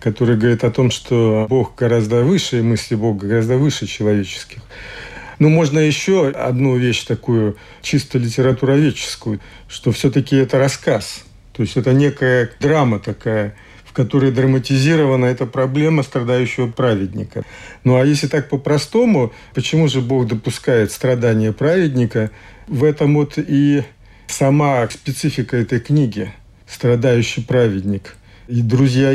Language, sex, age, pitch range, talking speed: Russian, male, 50-69, 115-140 Hz, 130 wpm